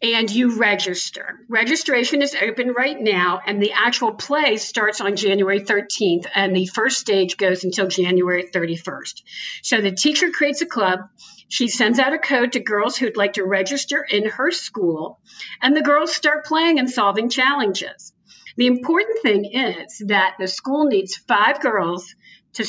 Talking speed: 165 wpm